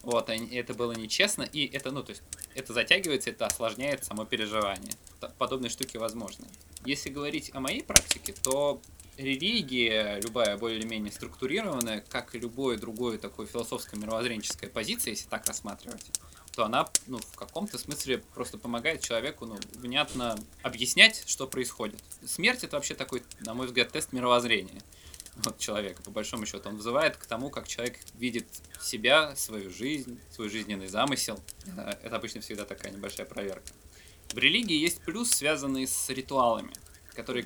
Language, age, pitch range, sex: Russian, 20-39, 105-125 Hz, male